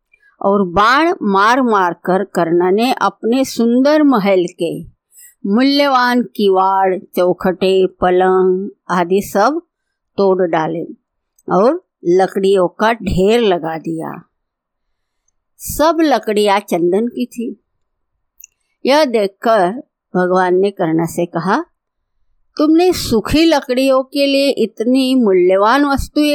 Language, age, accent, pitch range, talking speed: Hindi, 50-69, native, 185-275 Hz, 100 wpm